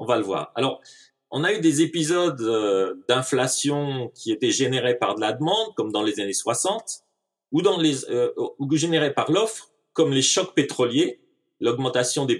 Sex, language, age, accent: male, French, 30-49, French